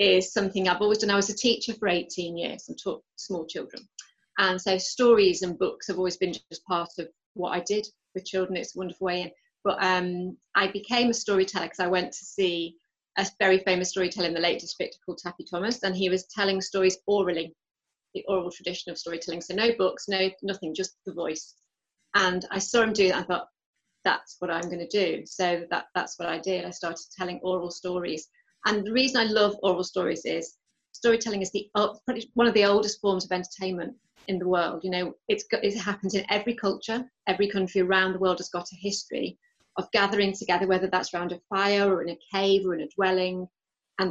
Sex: female